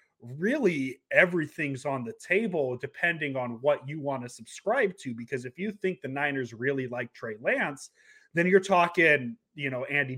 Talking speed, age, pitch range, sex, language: 170 wpm, 30-49, 130-180 Hz, male, English